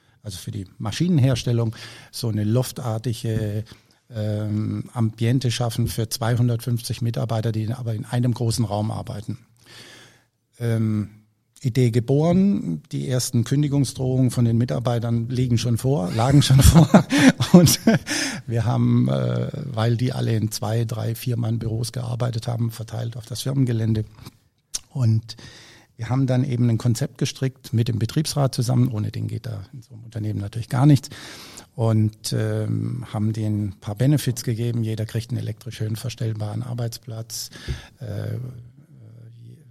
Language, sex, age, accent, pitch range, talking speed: German, male, 50-69, German, 110-125 Hz, 140 wpm